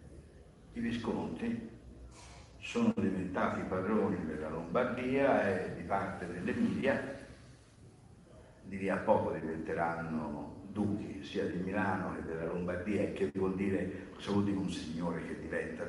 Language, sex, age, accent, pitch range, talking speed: Italian, male, 50-69, native, 90-135 Hz, 115 wpm